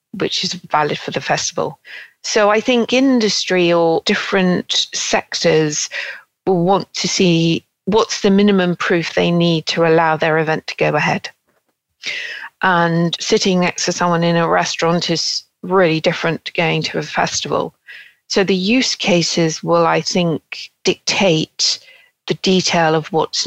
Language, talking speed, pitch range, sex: English, 150 wpm, 160-185 Hz, female